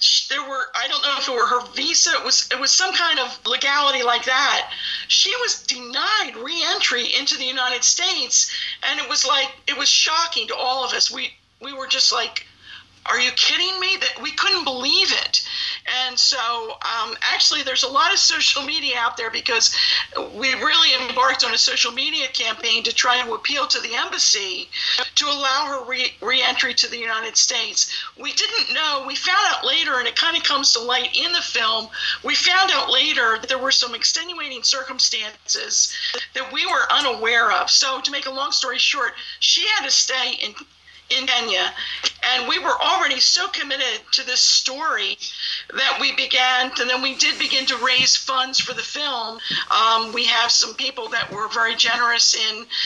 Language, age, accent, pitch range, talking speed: English, 50-69, American, 240-300 Hz, 190 wpm